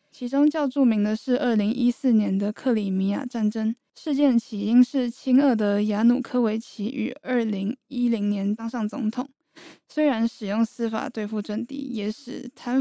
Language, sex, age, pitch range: Chinese, female, 10-29, 215-245 Hz